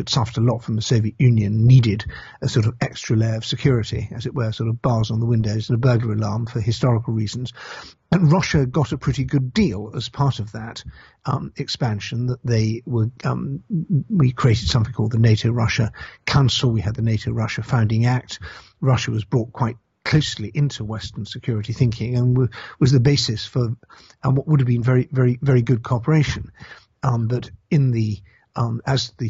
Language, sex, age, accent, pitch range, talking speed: English, male, 50-69, British, 110-130 Hz, 190 wpm